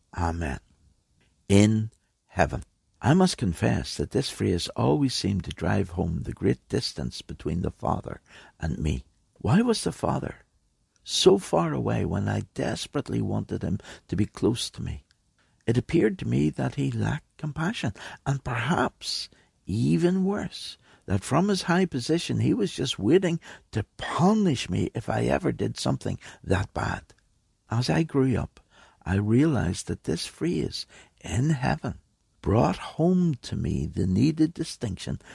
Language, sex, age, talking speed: English, male, 60-79, 150 wpm